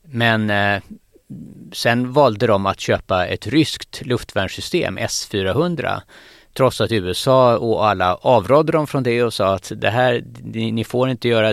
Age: 30-49